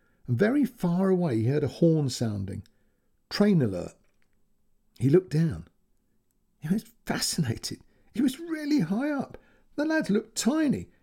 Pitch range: 120-195 Hz